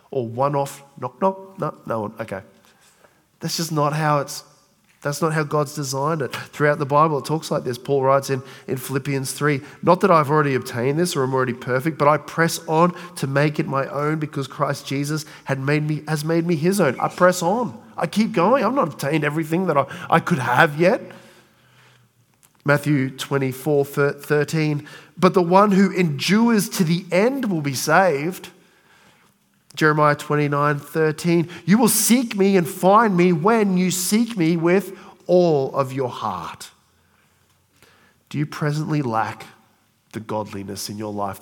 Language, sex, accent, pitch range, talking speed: English, male, Australian, 135-175 Hz, 175 wpm